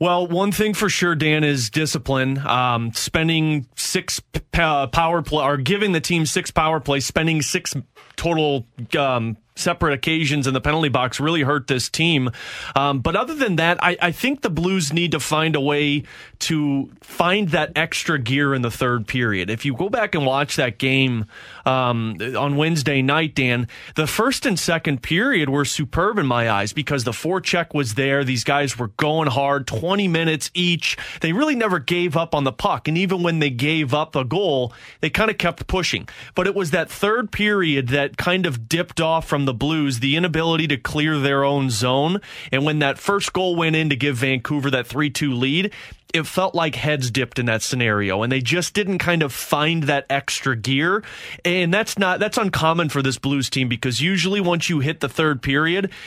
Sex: male